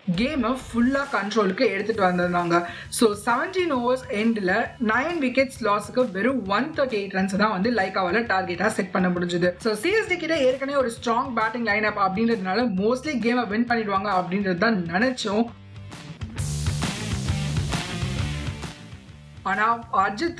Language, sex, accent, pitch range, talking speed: Tamil, female, native, 190-250 Hz, 30 wpm